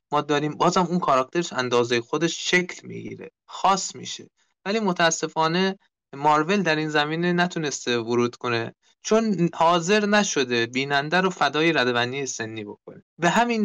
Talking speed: 135 wpm